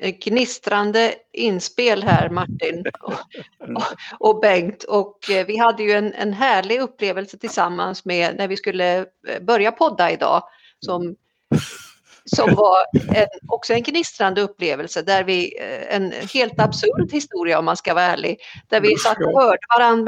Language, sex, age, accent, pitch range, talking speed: Swedish, female, 50-69, native, 190-250 Hz, 140 wpm